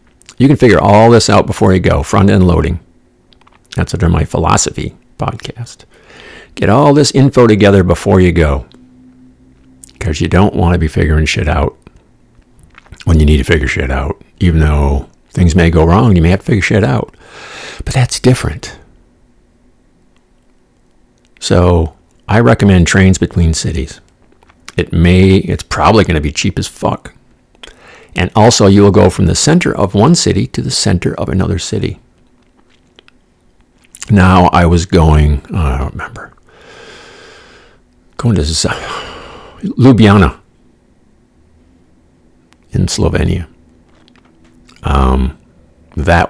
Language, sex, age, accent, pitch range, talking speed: English, male, 50-69, American, 80-105 Hz, 135 wpm